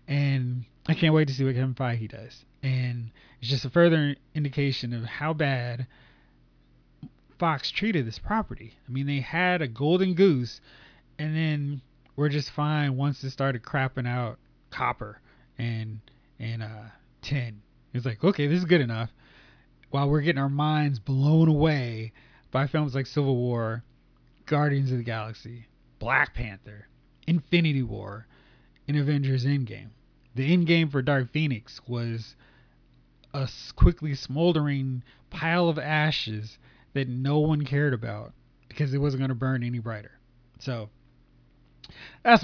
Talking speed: 145 wpm